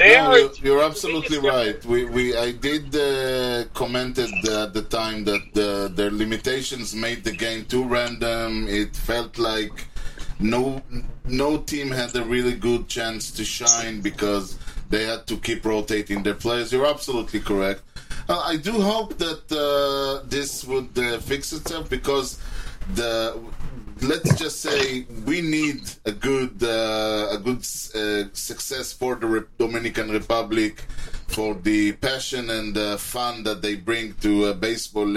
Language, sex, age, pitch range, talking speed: Hebrew, male, 20-39, 110-135 Hz, 155 wpm